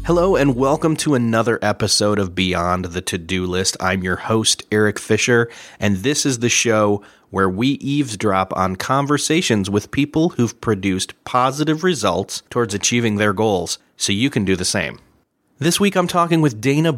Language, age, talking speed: English, 30-49, 175 wpm